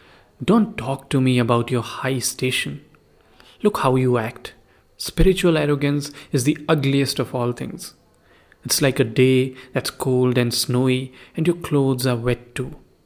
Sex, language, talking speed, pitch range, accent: male, English, 155 wpm, 125-140 Hz, Indian